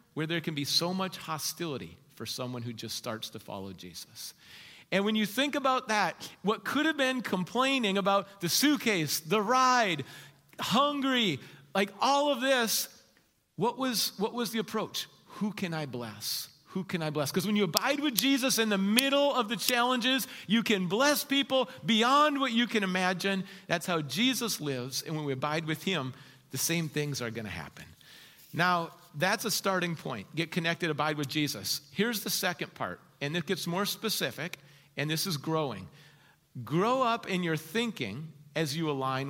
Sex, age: male, 40-59